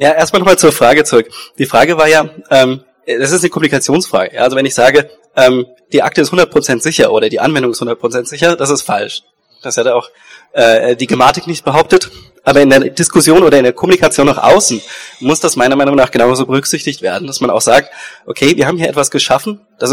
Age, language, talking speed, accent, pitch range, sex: 20-39, German, 205 wpm, German, 130-170 Hz, male